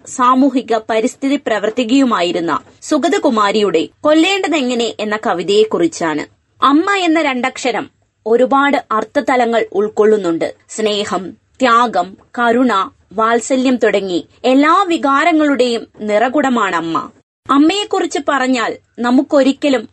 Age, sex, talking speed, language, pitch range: 20-39, female, 70 wpm, Malayalam, 215-290 Hz